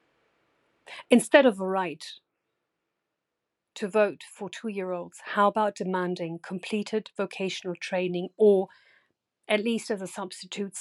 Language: English